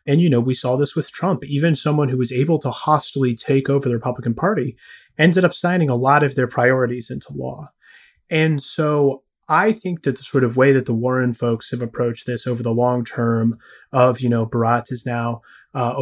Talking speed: 215 wpm